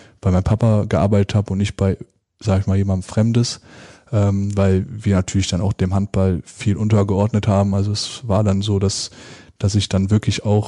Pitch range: 100-110 Hz